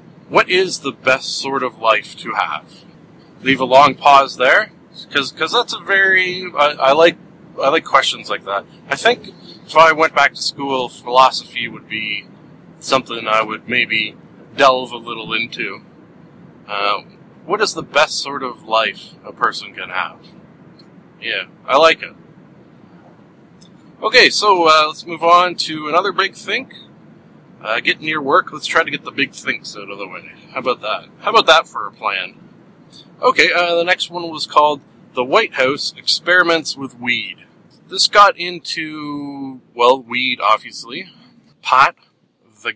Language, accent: English, American